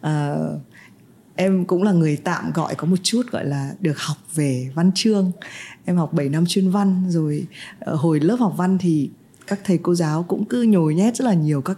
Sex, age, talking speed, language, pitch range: female, 20-39, 210 wpm, Vietnamese, 160-210 Hz